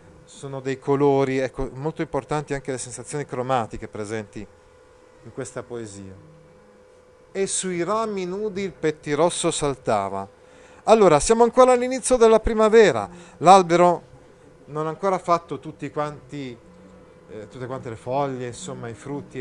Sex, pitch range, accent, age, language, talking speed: male, 130-170 Hz, native, 40-59, Italian, 130 wpm